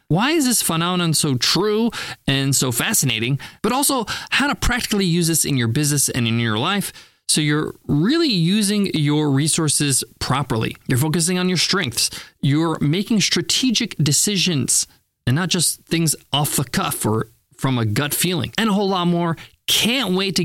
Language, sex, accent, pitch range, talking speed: English, male, American, 130-185 Hz, 175 wpm